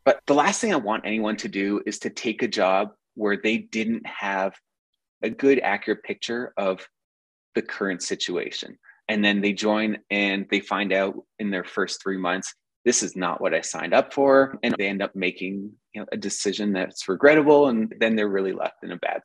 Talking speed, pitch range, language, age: 205 wpm, 100-135 Hz, English, 20-39